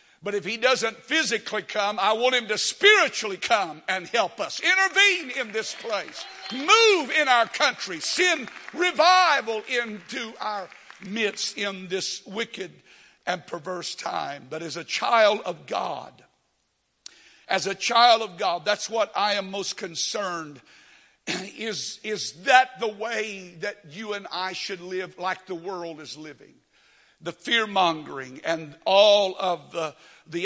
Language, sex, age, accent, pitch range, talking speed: English, male, 60-79, American, 185-255 Hz, 145 wpm